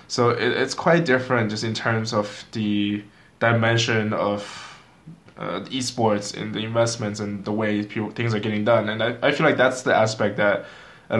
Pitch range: 105-125 Hz